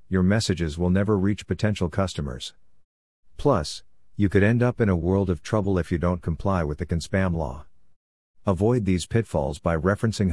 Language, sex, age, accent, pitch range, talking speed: English, male, 50-69, American, 85-100 Hz, 180 wpm